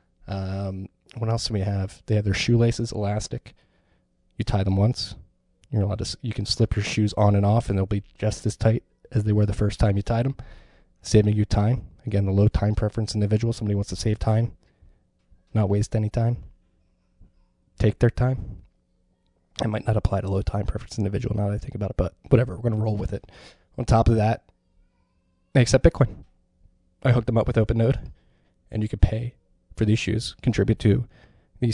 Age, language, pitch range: 20-39, English, 95-115 Hz